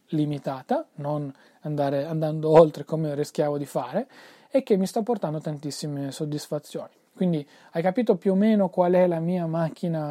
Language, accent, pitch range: Italian, native, 150-180 Hz